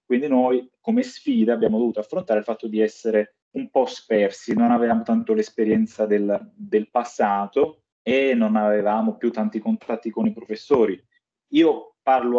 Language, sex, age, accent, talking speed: Italian, male, 30-49, native, 155 wpm